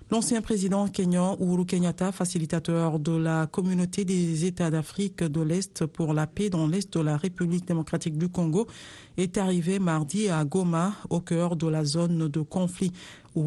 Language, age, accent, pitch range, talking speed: Italian, 50-69, French, 165-185 Hz, 170 wpm